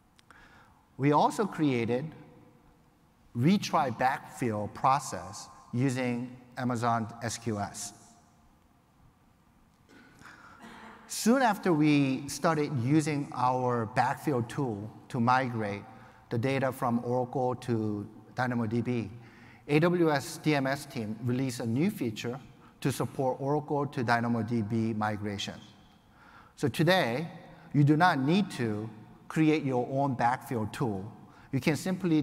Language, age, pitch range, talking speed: English, 50-69, 115-140 Hz, 100 wpm